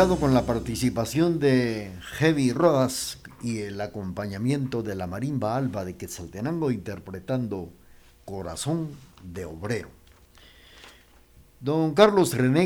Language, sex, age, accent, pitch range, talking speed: Spanish, male, 50-69, Mexican, 95-140 Hz, 105 wpm